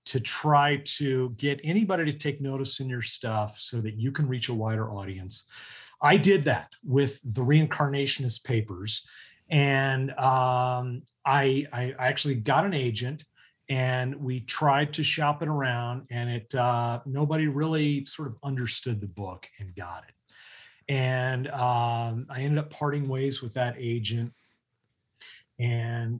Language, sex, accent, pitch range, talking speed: English, male, American, 115-140 Hz, 150 wpm